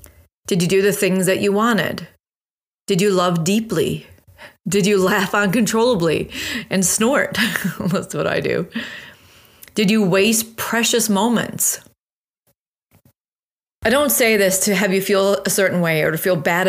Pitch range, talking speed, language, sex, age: 175-210 Hz, 150 wpm, English, female, 30-49